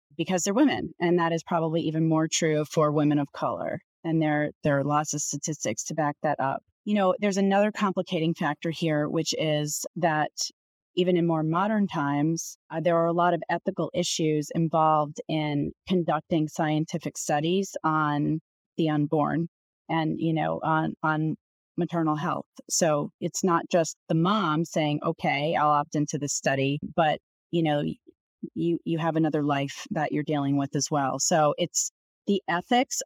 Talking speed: 170 wpm